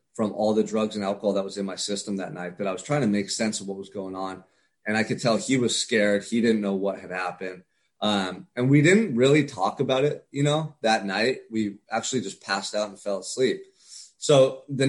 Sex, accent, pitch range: male, American, 100-120 Hz